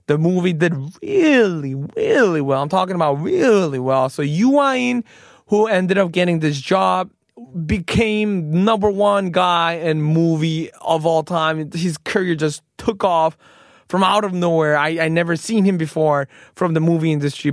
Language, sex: Korean, male